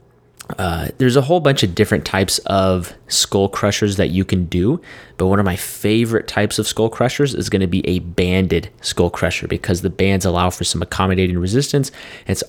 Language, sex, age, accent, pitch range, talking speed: English, male, 20-39, American, 90-110 Hz, 195 wpm